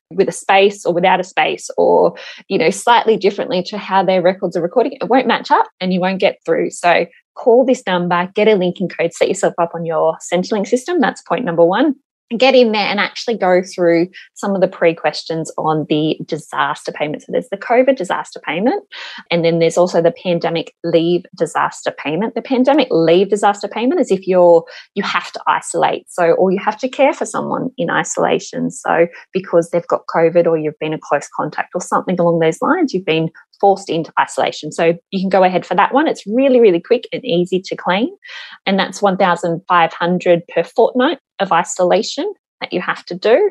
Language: English